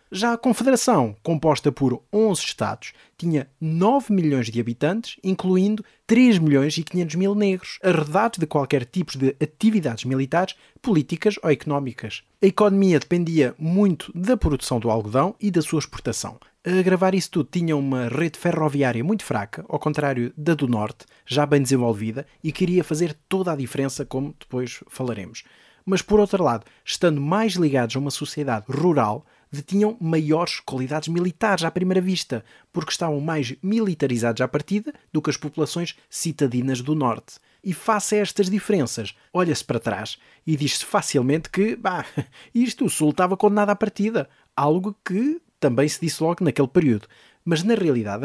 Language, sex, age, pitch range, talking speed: Portuguese, male, 20-39, 140-190 Hz, 160 wpm